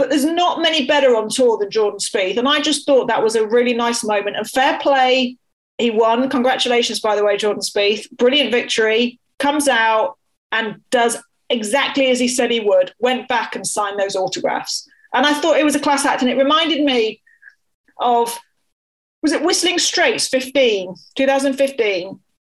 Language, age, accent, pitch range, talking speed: English, 40-59, British, 225-285 Hz, 180 wpm